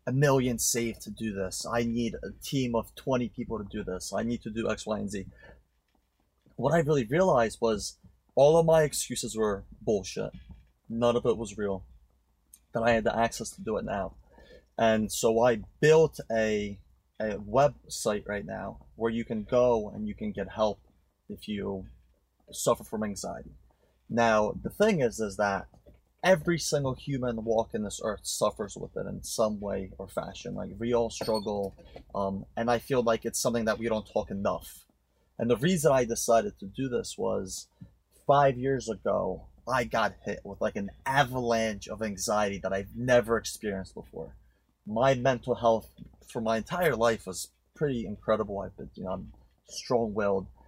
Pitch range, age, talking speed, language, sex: 100-120 Hz, 30-49, 175 wpm, English, male